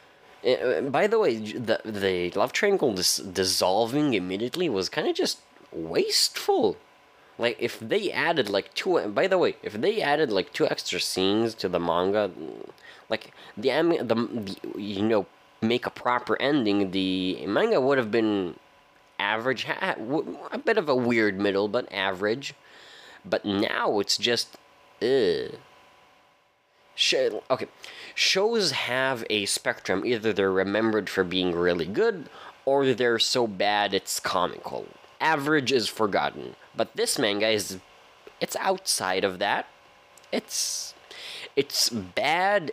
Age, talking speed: 20-39, 130 wpm